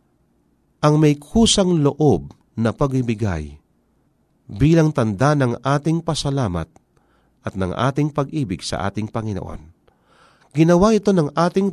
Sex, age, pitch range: male, 40-59, 100-150 Hz